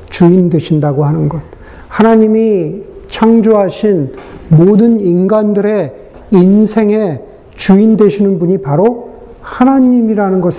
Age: 50-69